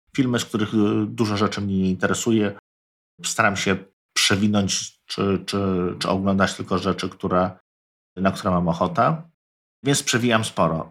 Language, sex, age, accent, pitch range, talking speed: Polish, male, 50-69, native, 90-115 Hz, 140 wpm